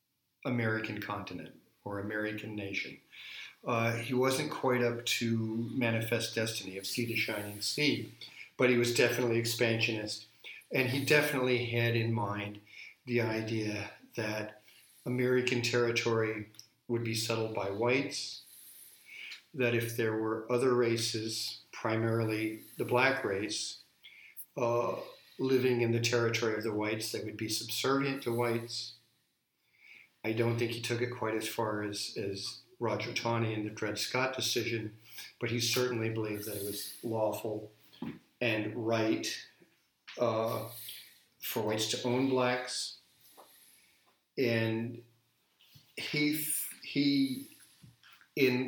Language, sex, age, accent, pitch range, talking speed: English, male, 50-69, American, 110-125 Hz, 125 wpm